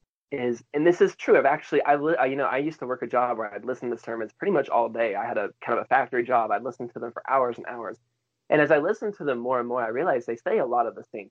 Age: 20-39